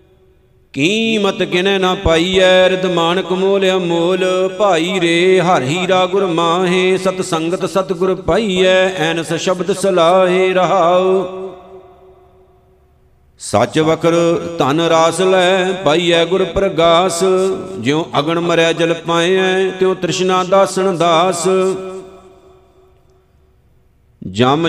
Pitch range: 165-190 Hz